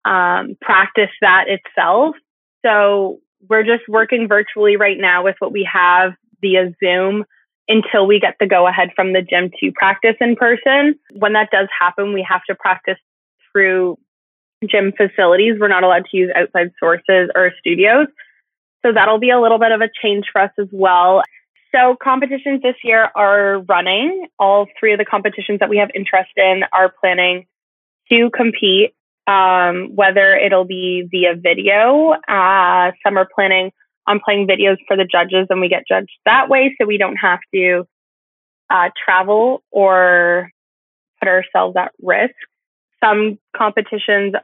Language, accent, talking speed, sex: English, American, 160 wpm, female